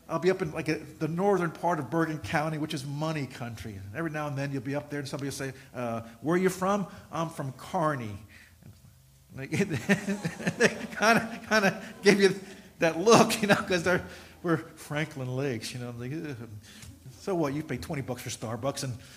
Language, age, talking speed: English, 50-69, 195 wpm